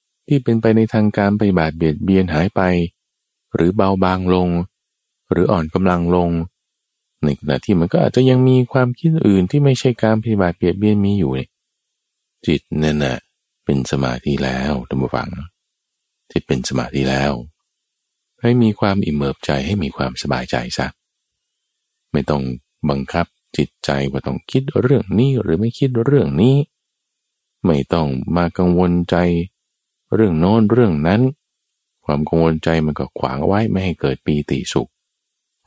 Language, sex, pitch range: Thai, male, 70-100 Hz